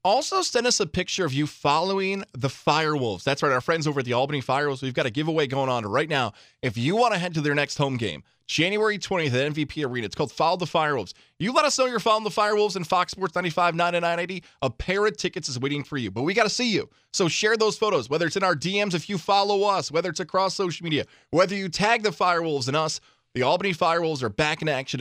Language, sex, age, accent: English, male, 20-39, American